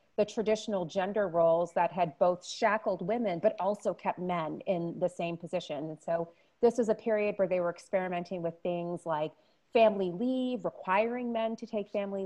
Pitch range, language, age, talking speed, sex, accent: 175-215 Hz, English, 30-49, 180 wpm, female, American